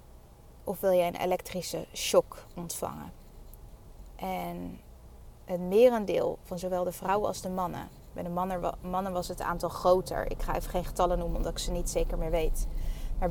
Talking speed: 170 wpm